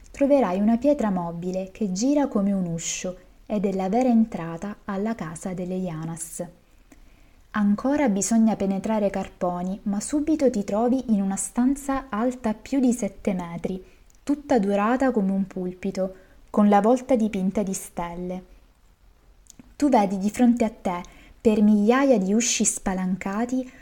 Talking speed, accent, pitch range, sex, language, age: 140 wpm, native, 190-245 Hz, female, Italian, 20-39